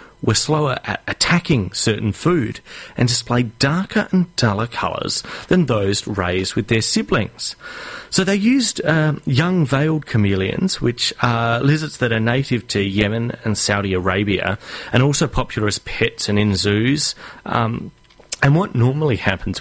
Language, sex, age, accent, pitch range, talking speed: English, male, 30-49, Australian, 110-150 Hz, 150 wpm